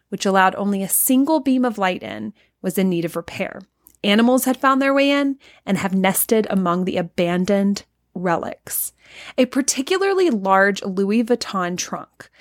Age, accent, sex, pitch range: 20-39, American, female, 190-240 Hz